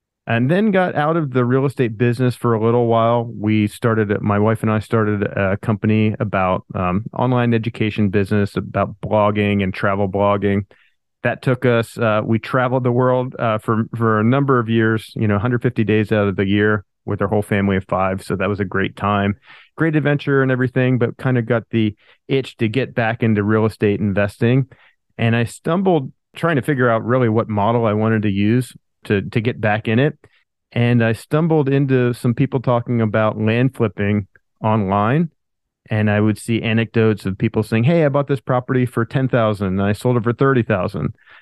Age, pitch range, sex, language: 40-59, 105-130 Hz, male, English